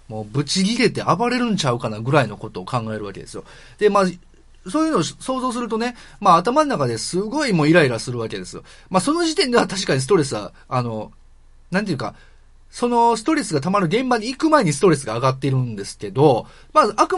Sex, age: male, 30-49